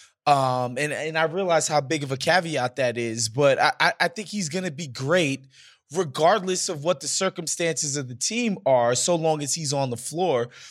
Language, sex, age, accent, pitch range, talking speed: English, male, 20-39, American, 135-185 Hz, 200 wpm